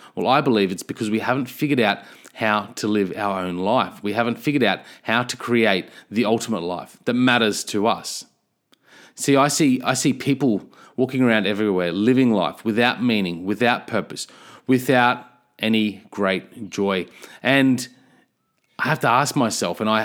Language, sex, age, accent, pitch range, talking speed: English, male, 30-49, Australian, 100-130 Hz, 170 wpm